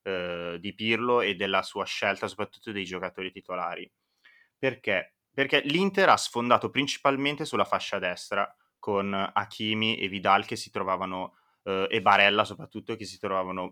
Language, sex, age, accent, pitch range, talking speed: Italian, male, 20-39, native, 100-115 Hz, 145 wpm